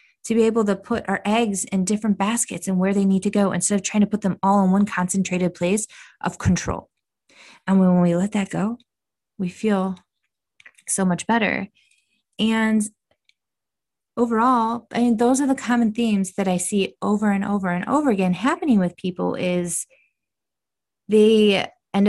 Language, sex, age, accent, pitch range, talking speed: English, female, 20-39, American, 175-220 Hz, 175 wpm